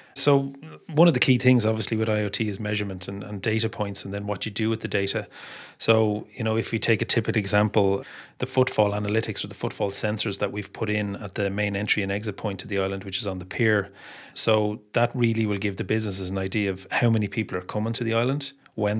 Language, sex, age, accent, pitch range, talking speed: English, male, 30-49, Irish, 100-115 Hz, 245 wpm